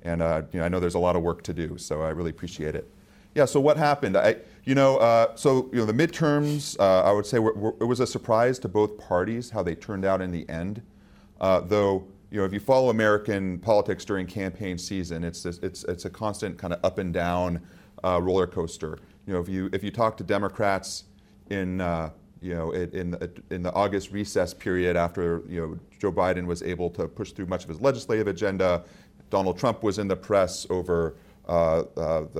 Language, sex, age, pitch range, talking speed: English, male, 30-49, 90-105 Hz, 225 wpm